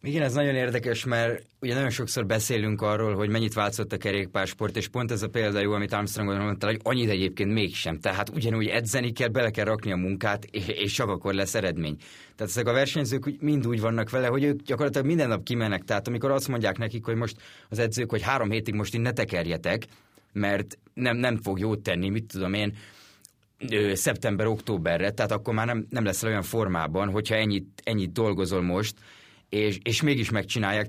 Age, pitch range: 30-49, 100-120 Hz